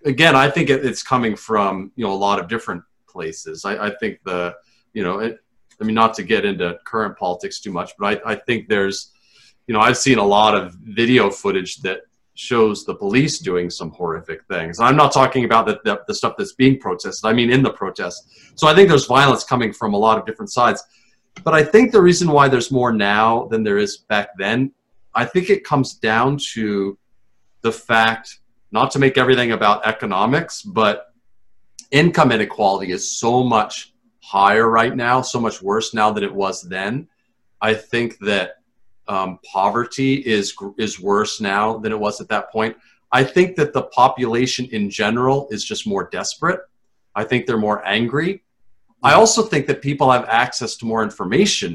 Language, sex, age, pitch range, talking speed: English, male, 30-49, 105-140 Hz, 190 wpm